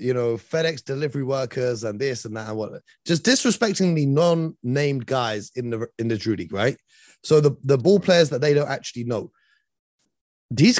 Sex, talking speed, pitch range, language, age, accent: male, 190 wpm, 125-200 Hz, English, 30-49, British